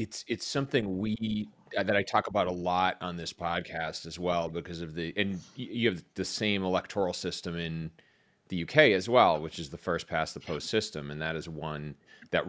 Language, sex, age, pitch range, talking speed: English, male, 30-49, 80-100 Hz, 205 wpm